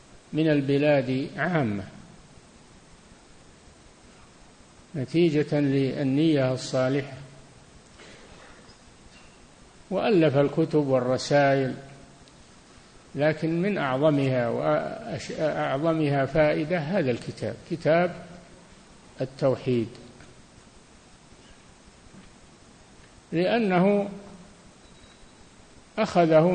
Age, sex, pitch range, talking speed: 50-69, male, 135-165 Hz, 45 wpm